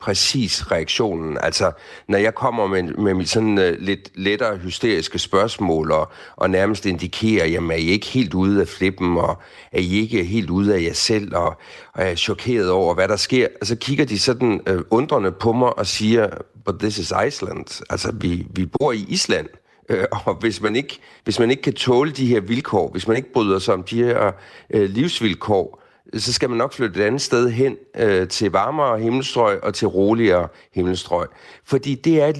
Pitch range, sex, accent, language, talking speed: 95-130 Hz, male, native, Danish, 200 wpm